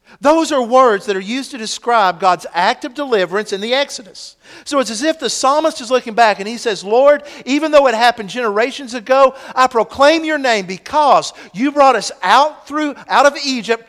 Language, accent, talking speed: English, American, 205 wpm